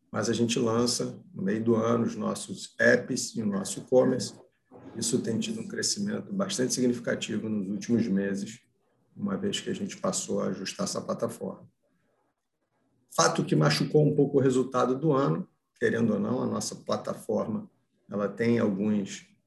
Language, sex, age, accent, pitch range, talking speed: Portuguese, male, 50-69, Brazilian, 110-155 Hz, 165 wpm